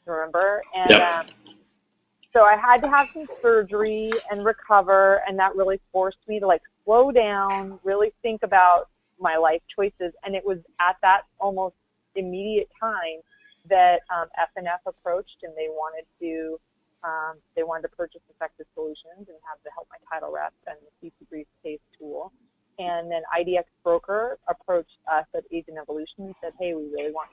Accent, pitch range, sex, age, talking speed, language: American, 170-215 Hz, female, 30-49, 170 wpm, English